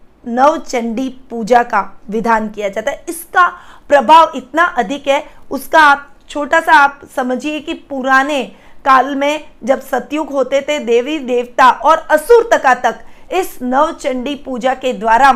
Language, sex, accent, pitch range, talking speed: Hindi, female, native, 245-305 Hz, 150 wpm